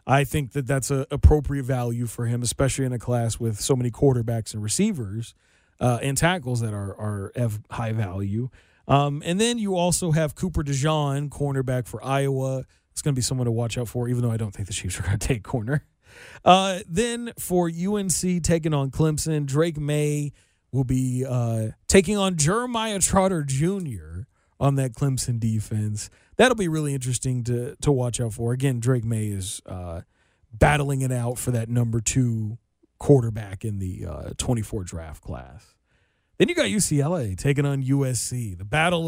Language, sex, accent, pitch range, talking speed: English, male, American, 115-150 Hz, 180 wpm